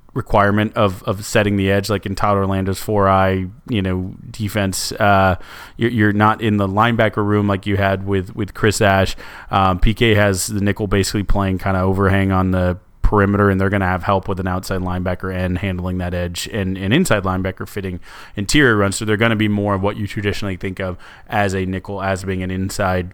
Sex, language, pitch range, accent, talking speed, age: male, English, 95-110 Hz, American, 215 wpm, 30-49